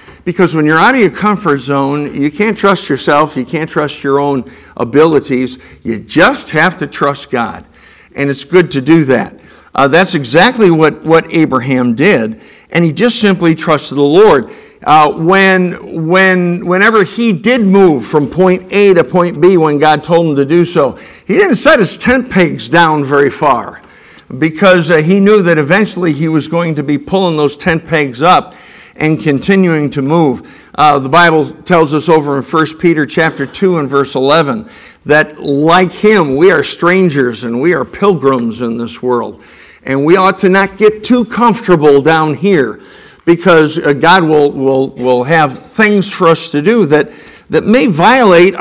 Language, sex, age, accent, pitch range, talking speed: English, male, 50-69, American, 145-195 Hz, 180 wpm